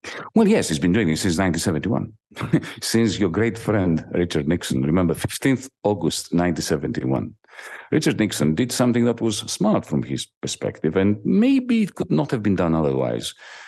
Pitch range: 80-110 Hz